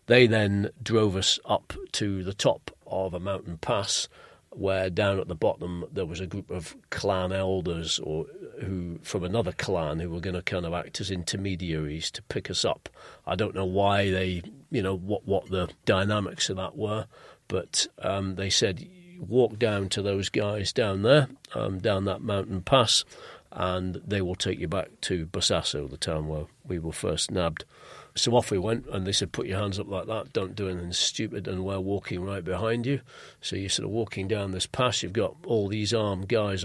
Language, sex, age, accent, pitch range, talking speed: English, male, 40-59, British, 95-110 Hz, 205 wpm